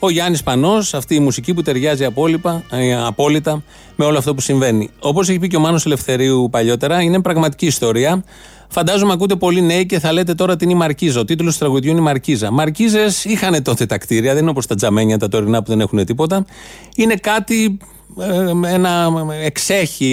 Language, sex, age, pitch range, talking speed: Greek, male, 30-49, 130-180 Hz, 195 wpm